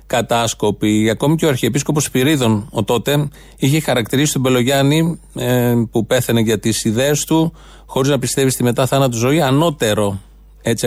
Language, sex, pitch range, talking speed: Greek, male, 115-150 Hz, 150 wpm